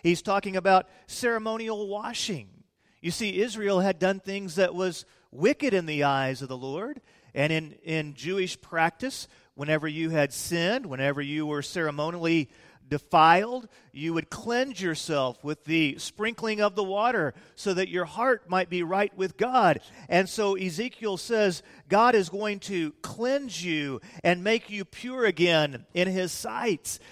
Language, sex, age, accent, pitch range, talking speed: English, male, 40-59, American, 120-185 Hz, 155 wpm